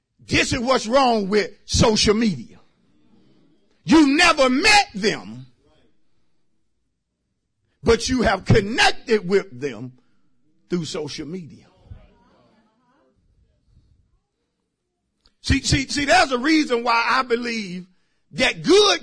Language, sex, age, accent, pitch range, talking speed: English, male, 50-69, American, 230-345 Hz, 100 wpm